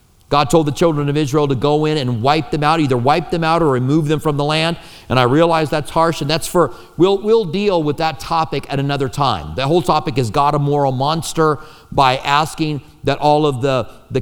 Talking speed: 230 wpm